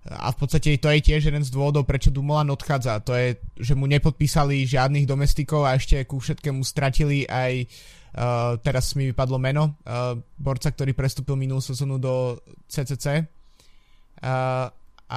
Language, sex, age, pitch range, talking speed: Slovak, male, 20-39, 130-145 Hz, 155 wpm